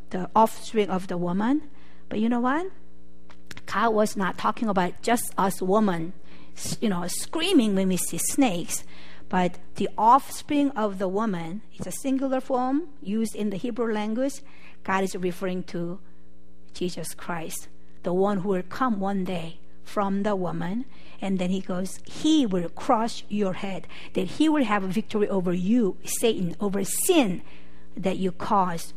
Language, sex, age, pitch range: Korean, female, 50-69, 180-235 Hz